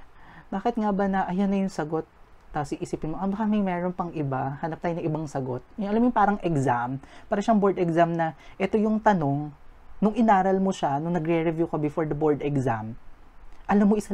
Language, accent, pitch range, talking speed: Filipino, native, 150-200 Hz, 205 wpm